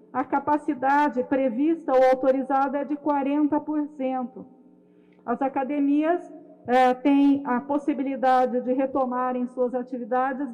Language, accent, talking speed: Portuguese, Brazilian, 100 wpm